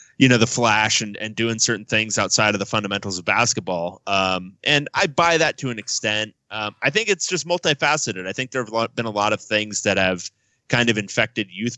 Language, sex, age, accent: English, male, 30-49, American